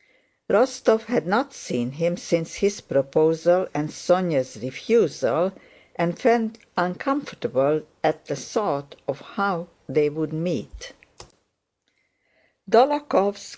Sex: female